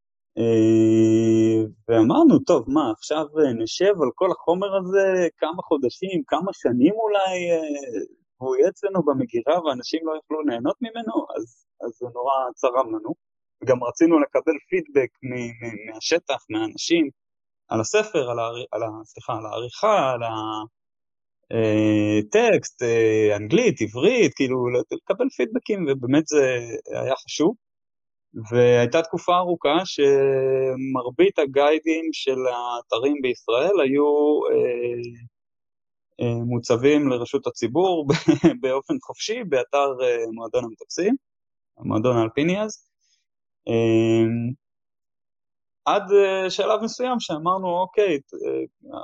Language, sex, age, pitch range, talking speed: Hebrew, male, 20-39, 120-185 Hz, 110 wpm